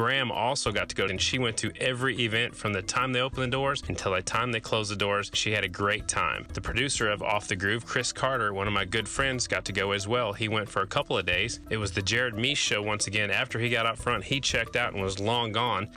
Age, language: 30-49, English